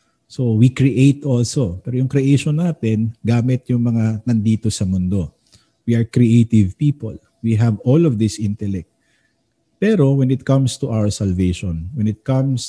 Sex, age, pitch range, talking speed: male, 50-69, 105-135 Hz, 160 wpm